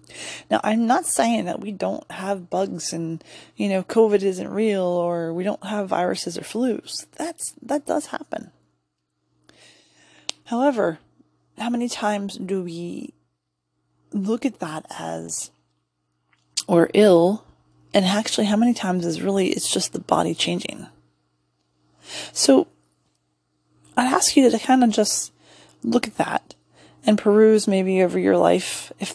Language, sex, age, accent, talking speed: English, female, 20-39, American, 140 wpm